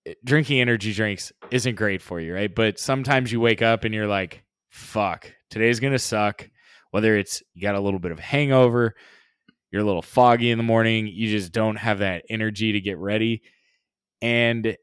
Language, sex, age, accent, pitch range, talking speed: English, male, 20-39, American, 100-115 Hz, 185 wpm